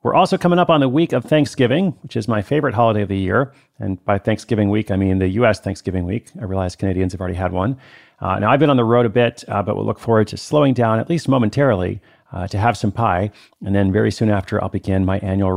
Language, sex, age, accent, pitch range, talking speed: English, male, 40-59, American, 95-130 Hz, 260 wpm